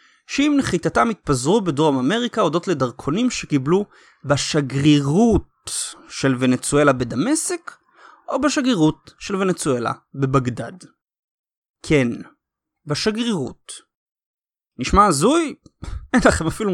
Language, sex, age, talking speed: Hebrew, male, 30-49, 85 wpm